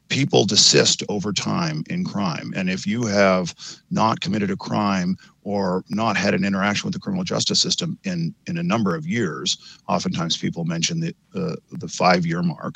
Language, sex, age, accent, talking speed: English, male, 40-59, American, 180 wpm